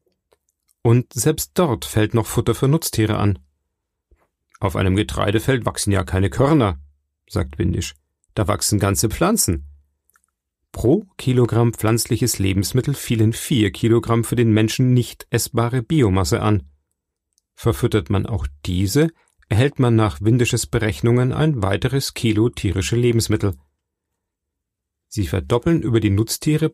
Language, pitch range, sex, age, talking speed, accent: German, 95-120 Hz, male, 40-59, 125 wpm, German